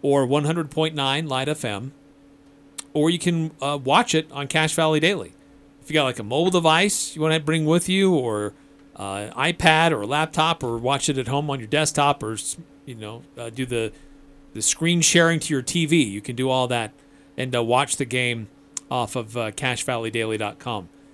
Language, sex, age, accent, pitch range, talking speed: English, male, 40-59, American, 130-160 Hz, 195 wpm